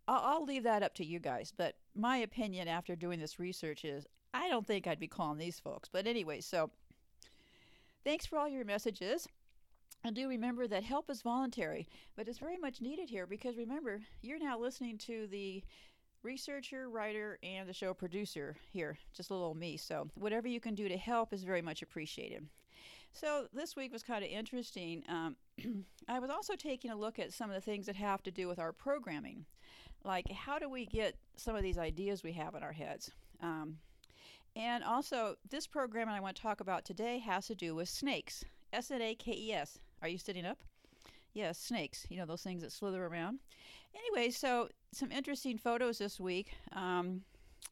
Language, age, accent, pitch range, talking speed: English, 50-69, American, 180-245 Hz, 190 wpm